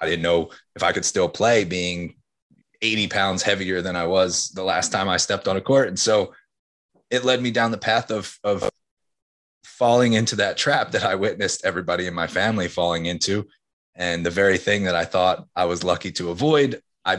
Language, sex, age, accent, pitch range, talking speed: English, male, 20-39, American, 85-105 Hz, 205 wpm